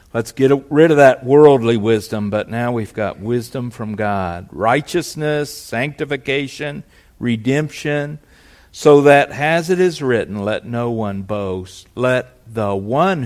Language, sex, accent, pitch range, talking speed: English, male, American, 95-125 Hz, 135 wpm